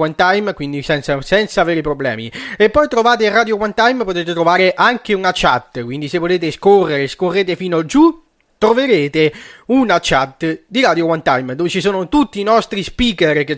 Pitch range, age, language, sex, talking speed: 155-195 Hz, 30-49, Italian, male, 170 wpm